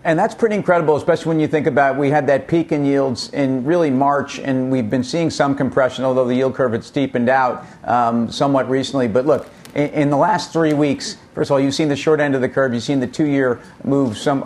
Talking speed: 245 wpm